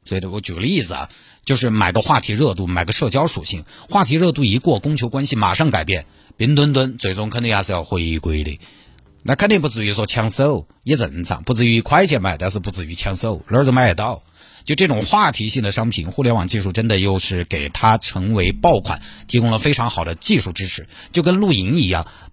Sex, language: male, Chinese